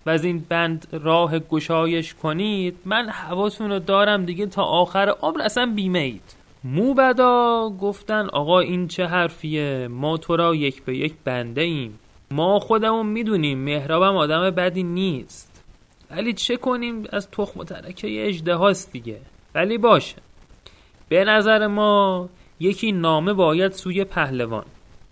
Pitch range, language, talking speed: 150-200 Hz, Persian, 135 wpm